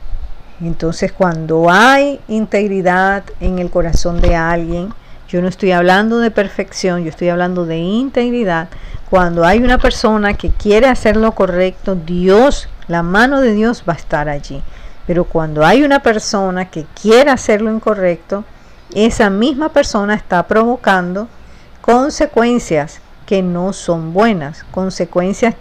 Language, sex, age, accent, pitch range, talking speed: Spanish, female, 50-69, American, 170-220 Hz, 135 wpm